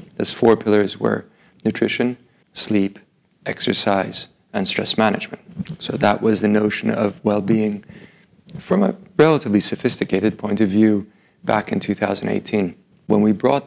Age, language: 40-59, English